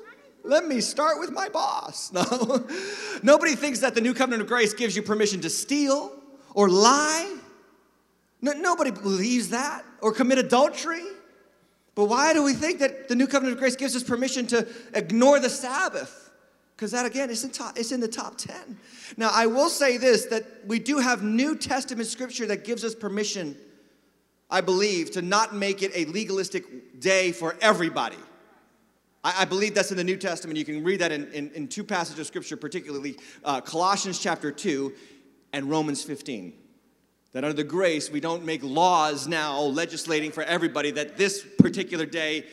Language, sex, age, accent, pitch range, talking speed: English, male, 30-49, American, 175-250 Hz, 175 wpm